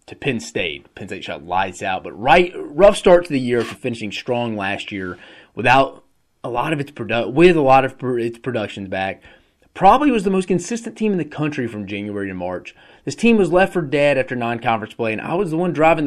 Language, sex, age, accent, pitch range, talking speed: English, male, 30-49, American, 100-140 Hz, 230 wpm